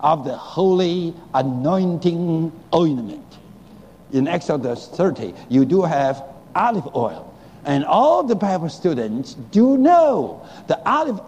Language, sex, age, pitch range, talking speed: English, male, 60-79, 150-205 Hz, 115 wpm